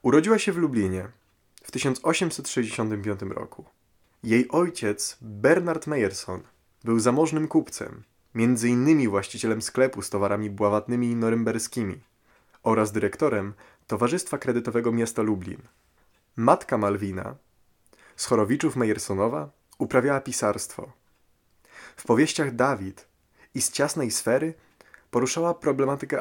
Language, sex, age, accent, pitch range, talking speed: Polish, male, 20-39, native, 105-145 Hz, 100 wpm